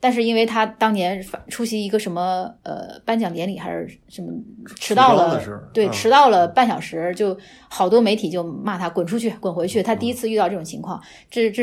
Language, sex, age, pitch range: Chinese, female, 20-39, 175-220 Hz